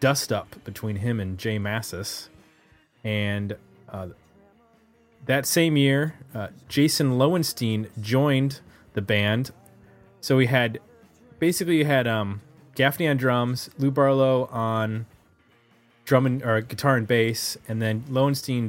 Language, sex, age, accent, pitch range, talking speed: English, male, 20-39, American, 105-135 Hz, 130 wpm